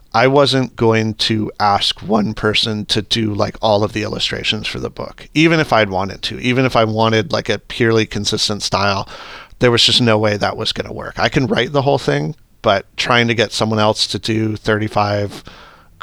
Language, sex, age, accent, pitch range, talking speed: English, male, 40-59, American, 100-115 Hz, 210 wpm